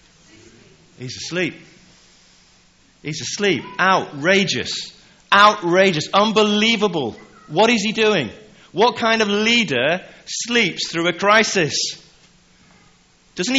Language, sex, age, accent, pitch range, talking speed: English, male, 40-59, British, 145-195 Hz, 90 wpm